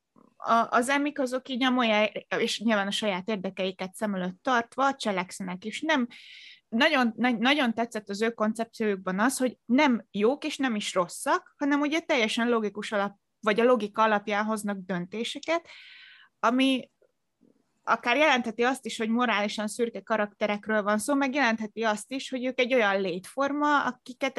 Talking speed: 160 wpm